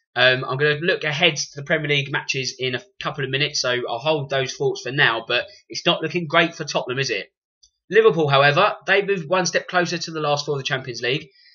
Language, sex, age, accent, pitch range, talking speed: English, male, 20-39, British, 135-180 Hz, 245 wpm